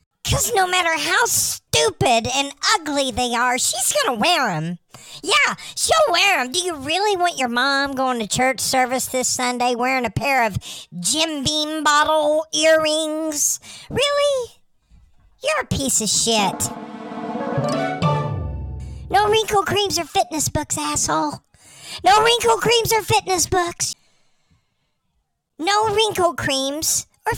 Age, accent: 50-69, American